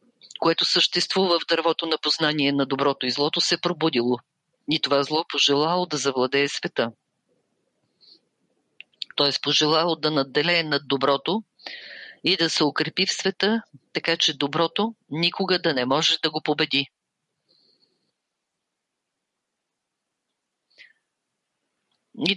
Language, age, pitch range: English, 40-59, 150-180 Hz